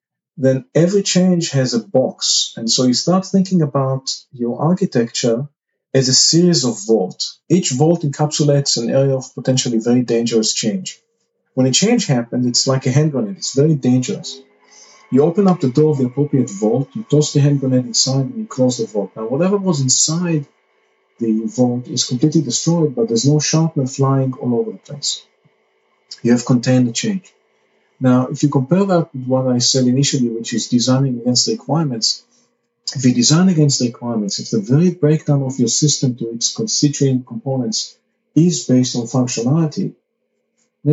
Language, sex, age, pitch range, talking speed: English, male, 40-59, 125-155 Hz, 175 wpm